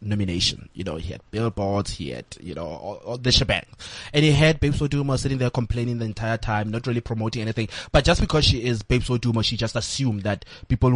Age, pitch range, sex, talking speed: 20-39, 115-155 Hz, male, 225 wpm